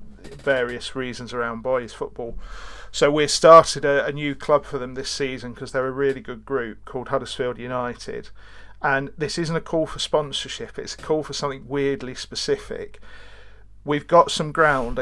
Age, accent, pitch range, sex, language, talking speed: 40-59, British, 125-145 Hz, male, English, 170 wpm